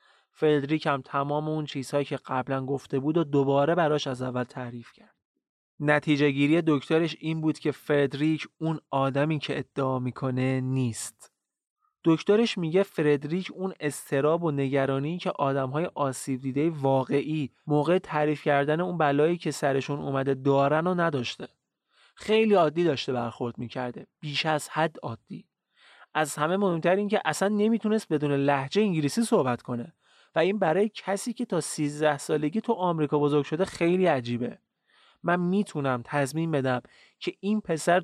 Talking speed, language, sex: 145 wpm, Persian, male